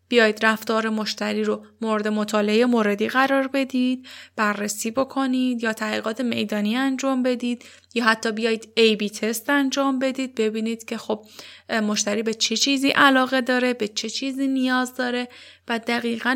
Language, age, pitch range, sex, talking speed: Persian, 10-29, 220-275 Hz, female, 150 wpm